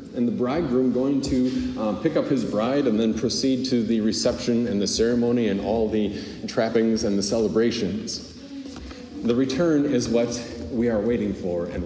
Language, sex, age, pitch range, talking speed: English, male, 40-59, 115-140 Hz, 175 wpm